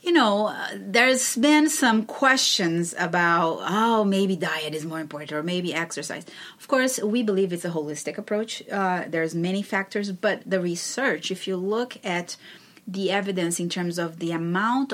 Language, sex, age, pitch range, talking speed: English, female, 30-49, 170-210 Hz, 175 wpm